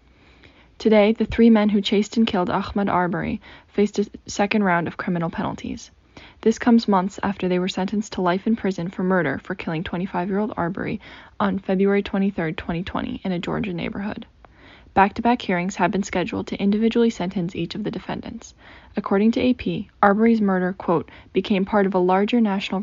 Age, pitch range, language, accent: 10-29, 180-215 Hz, English, American